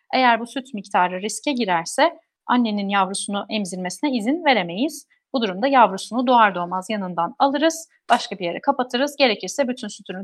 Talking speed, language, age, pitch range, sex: 145 wpm, Turkish, 30-49, 195-275 Hz, female